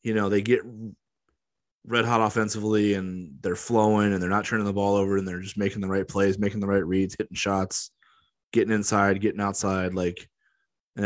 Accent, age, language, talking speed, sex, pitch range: American, 20-39, English, 195 wpm, male, 90-110 Hz